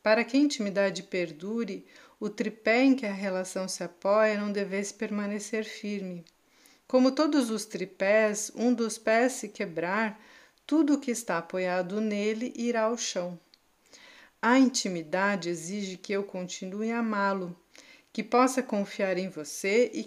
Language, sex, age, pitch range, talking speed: Portuguese, female, 50-69, 185-240 Hz, 145 wpm